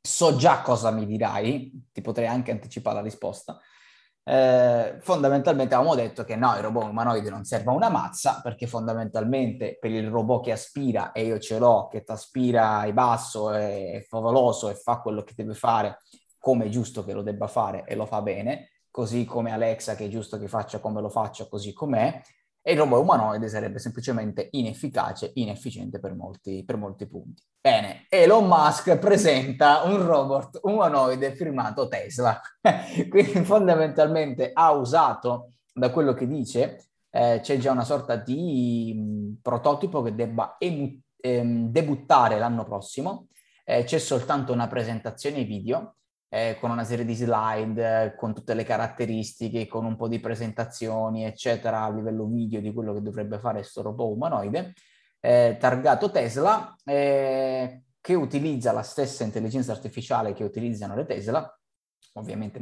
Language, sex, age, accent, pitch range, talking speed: Italian, male, 20-39, native, 110-130 Hz, 155 wpm